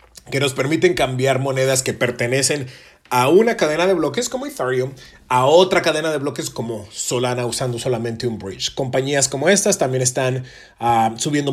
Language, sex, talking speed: English, male, 160 wpm